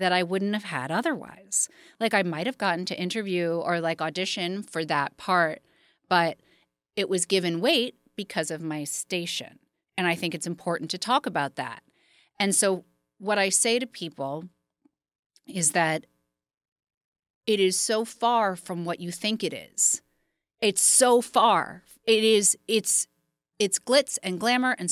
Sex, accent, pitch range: female, American, 170-220 Hz